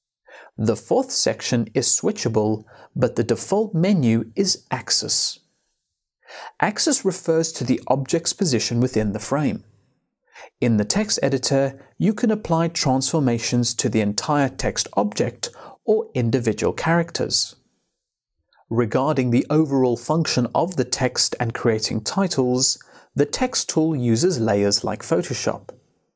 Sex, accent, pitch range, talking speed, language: male, British, 120-175 Hz, 120 wpm, English